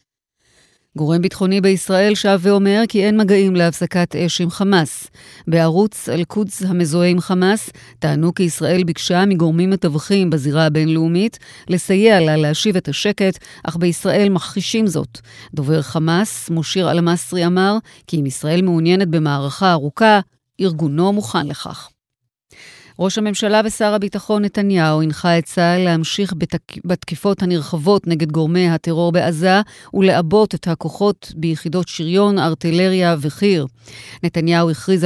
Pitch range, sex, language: 165-195 Hz, female, Hebrew